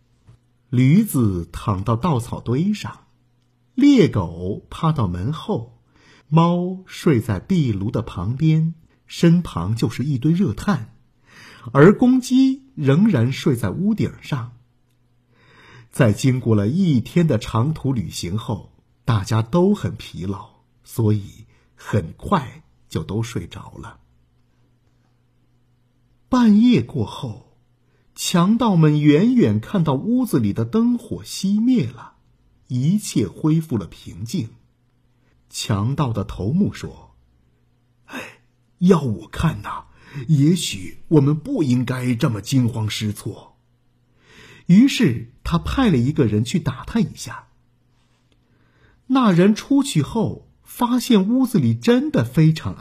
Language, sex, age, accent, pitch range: Chinese, male, 50-69, native, 115-170 Hz